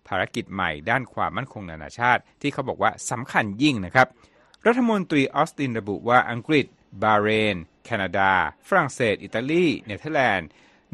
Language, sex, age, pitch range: Thai, male, 60-79, 100-135 Hz